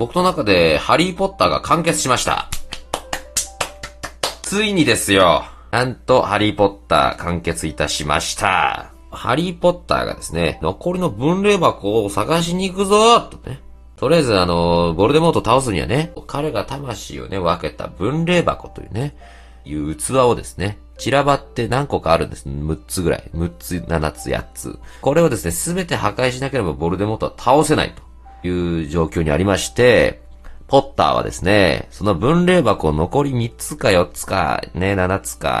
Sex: male